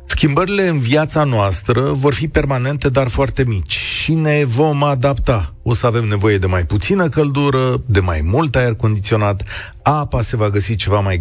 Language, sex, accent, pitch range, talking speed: Romanian, male, native, 105-150 Hz, 175 wpm